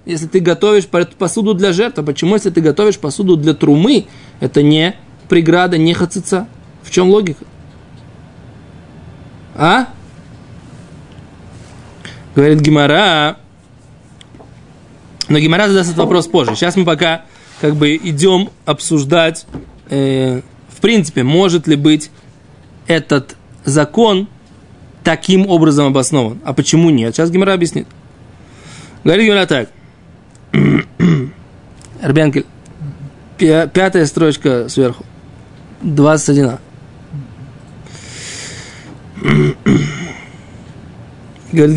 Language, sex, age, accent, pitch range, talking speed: Russian, male, 20-39, native, 140-180 Hz, 90 wpm